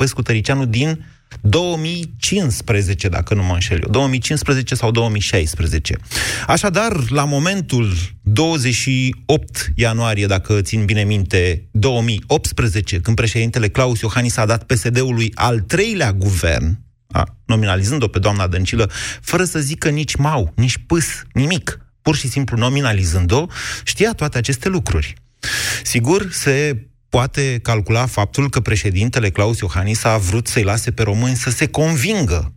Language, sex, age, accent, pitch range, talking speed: Romanian, male, 30-49, native, 105-130 Hz, 130 wpm